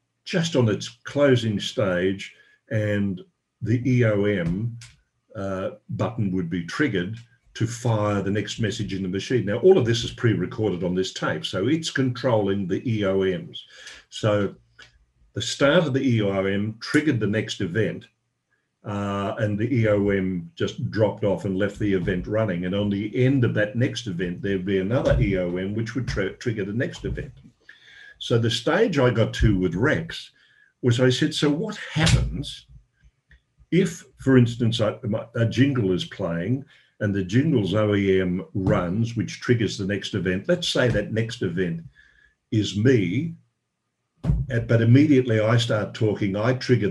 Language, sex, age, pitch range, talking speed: English, male, 50-69, 100-130 Hz, 155 wpm